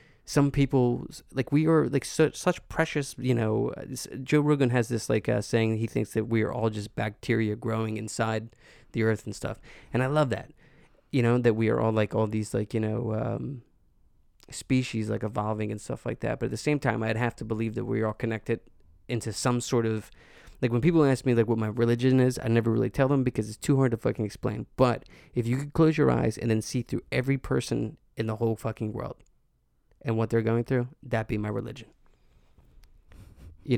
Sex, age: male, 20-39